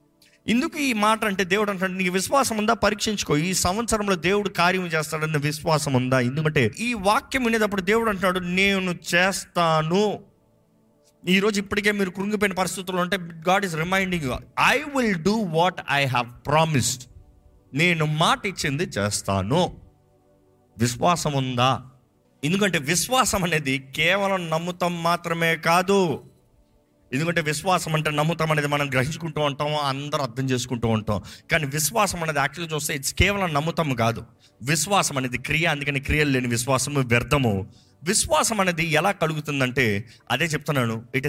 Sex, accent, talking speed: male, native, 130 wpm